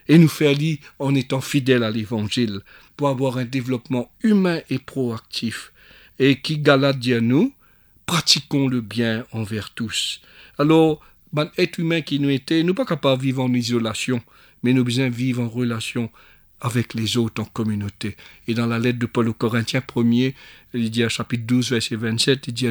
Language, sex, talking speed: French, male, 180 wpm